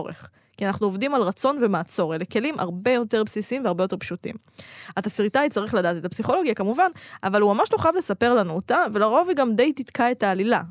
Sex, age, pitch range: female, 20-39, 185-245 Hz